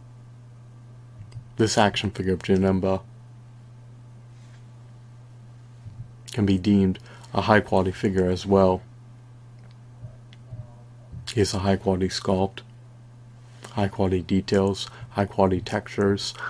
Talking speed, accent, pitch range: 95 wpm, American, 95-120 Hz